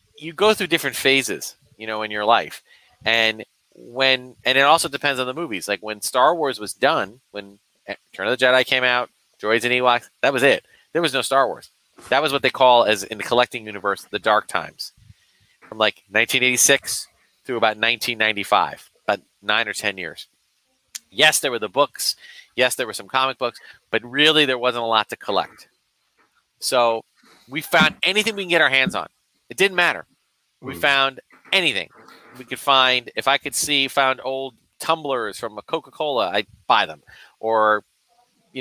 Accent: American